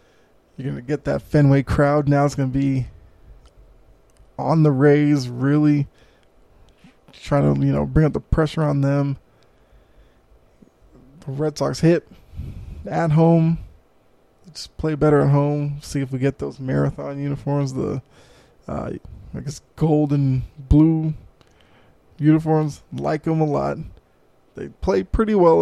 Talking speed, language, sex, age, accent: 140 wpm, English, male, 20-39, American